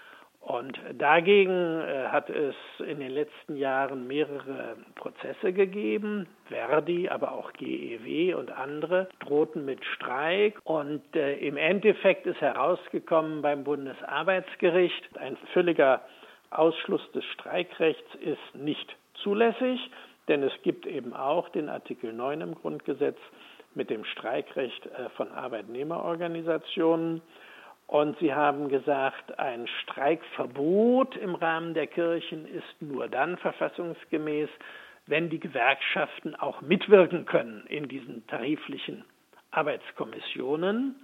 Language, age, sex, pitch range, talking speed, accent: German, 60-79, male, 145-185 Hz, 110 wpm, German